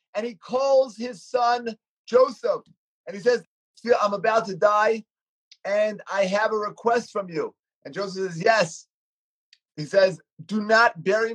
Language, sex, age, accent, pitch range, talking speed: English, male, 30-49, American, 180-225 Hz, 155 wpm